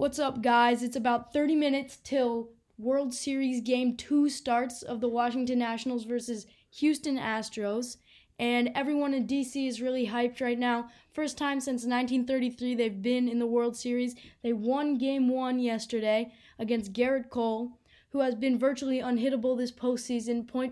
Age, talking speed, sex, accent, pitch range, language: 10-29, 155 wpm, female, American, 235-260 Hz, English